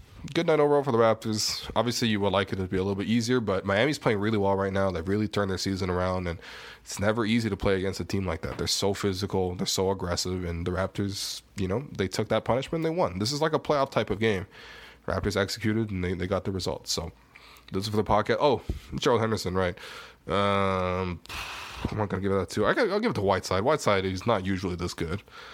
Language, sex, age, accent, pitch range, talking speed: English, male, 20-39, American, 95-110 Hz, 235 wpm